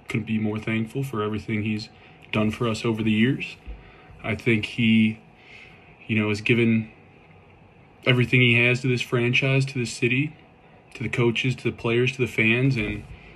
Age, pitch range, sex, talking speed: 20-39, 105-120 Hz, male, 175 wpm